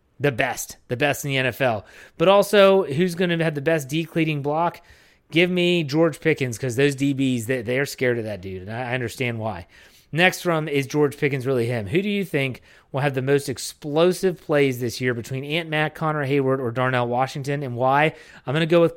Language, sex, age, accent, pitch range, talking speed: English, male, 30-49, American, 130-160 Hz, 210 wpm